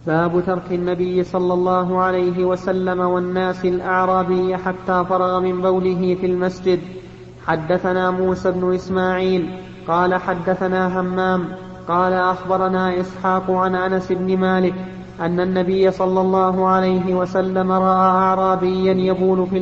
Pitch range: 185-190 Hz